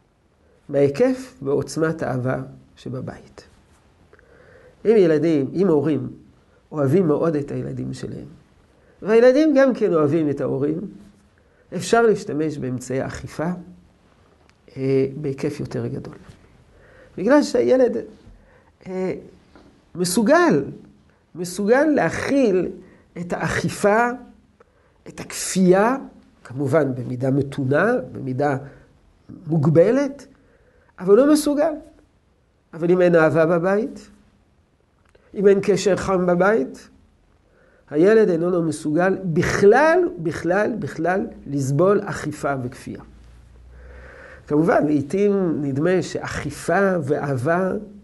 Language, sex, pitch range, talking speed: Hebrew, male, 140-210 Hz, 85 wpm